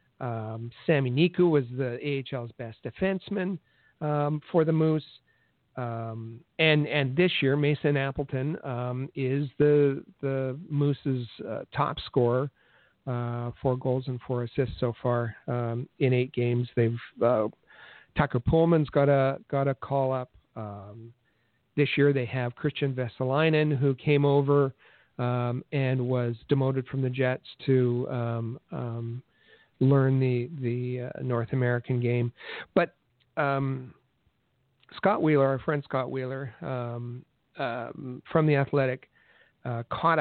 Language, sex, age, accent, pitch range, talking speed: English, male, 50-69, American, 120-145 Hz, 135 wpm